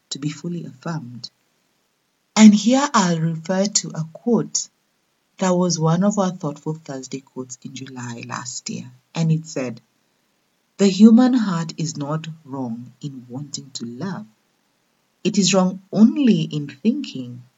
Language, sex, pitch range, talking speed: English, female, 145-215 Hz, 145 wpm